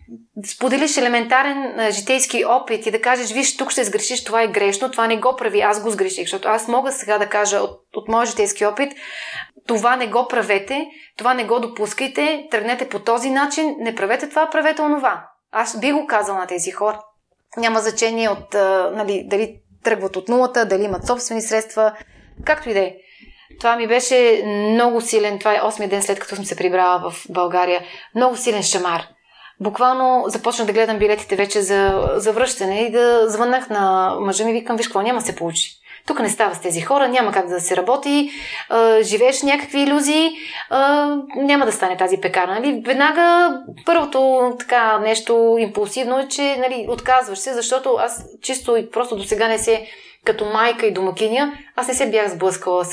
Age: 30-49